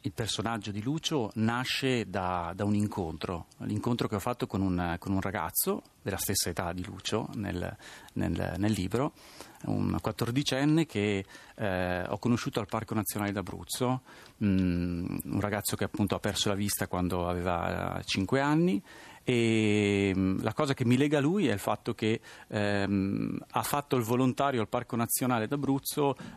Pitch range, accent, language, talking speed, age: 100-125 Hz, native, Italian, 160 wpm, 40-59